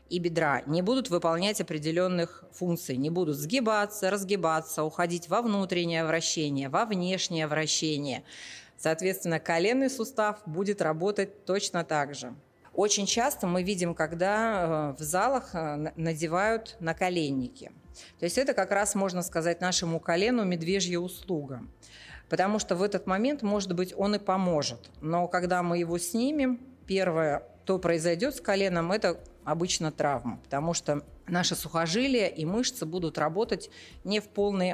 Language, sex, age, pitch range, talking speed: Russian, female, 30-49, 160-200 Hz, 140 wpm